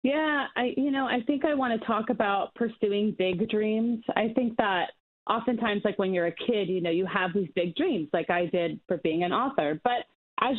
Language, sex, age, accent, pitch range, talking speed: English, female, 30-49, American, 175-230 Hz, 220 wpm